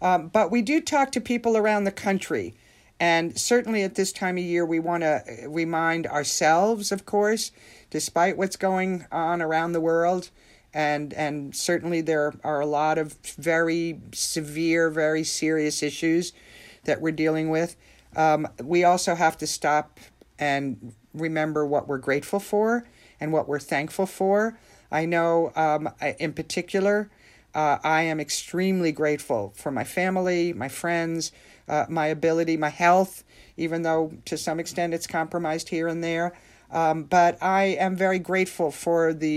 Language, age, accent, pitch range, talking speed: English, 50-69, American, 155-185 Hz, 155 wpm